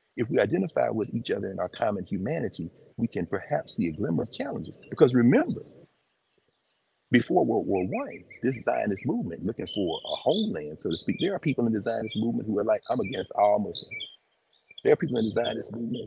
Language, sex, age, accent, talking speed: English, male, 40-59, American, 205 wpm